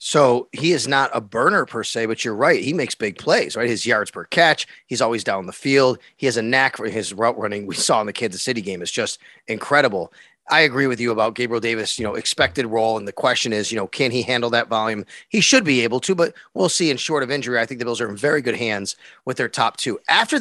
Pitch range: 115-145 Hz